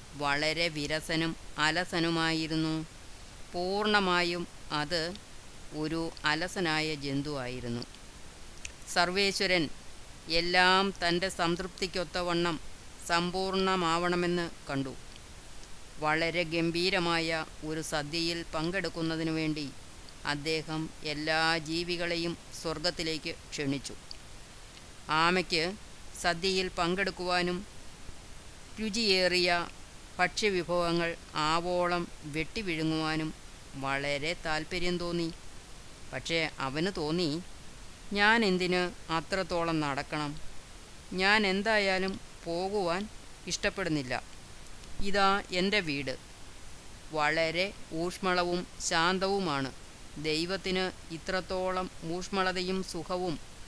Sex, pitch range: female, 155-180 Hz